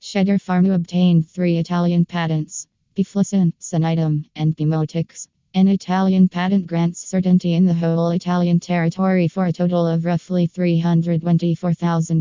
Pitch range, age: 165-175 Hz, 20-39